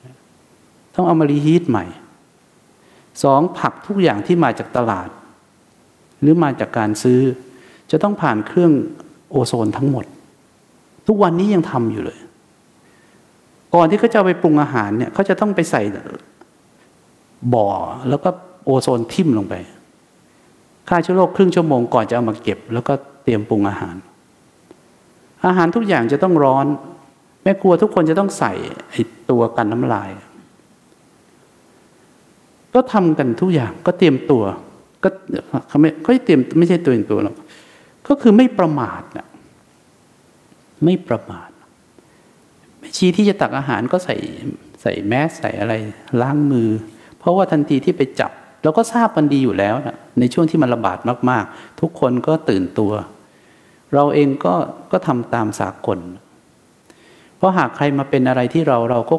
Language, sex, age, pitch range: English, male, 60-79, 115-175 Hz